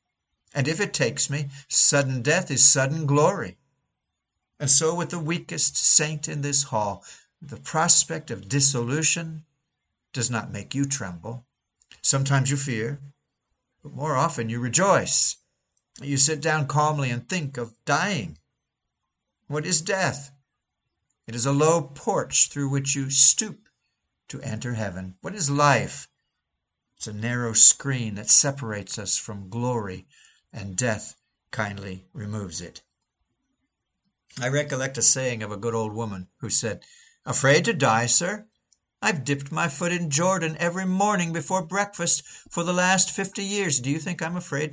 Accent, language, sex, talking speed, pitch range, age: American, English, male, 150 wpm, 115-155 Hz, 60-79